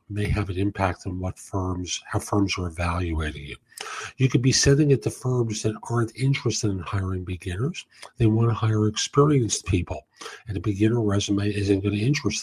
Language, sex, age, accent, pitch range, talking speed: English, male, 50-69, American, 90-115 Hz, 190 wpm